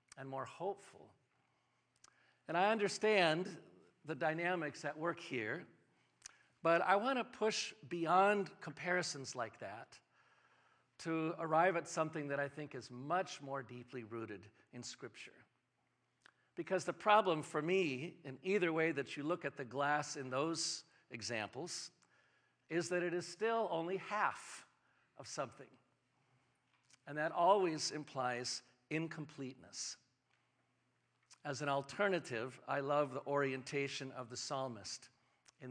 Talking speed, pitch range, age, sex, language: 130 wpm, 130-170 Hz, 50-69, male, English